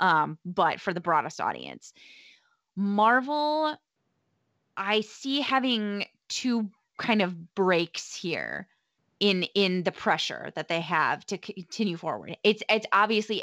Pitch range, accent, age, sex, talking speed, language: 170-205 Hz, American, 20-39, female, 125 wpm, English